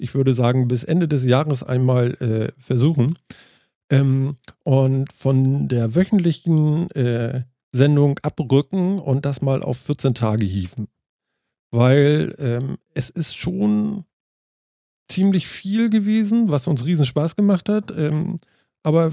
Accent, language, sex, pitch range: German, German, male, 125-165 Hz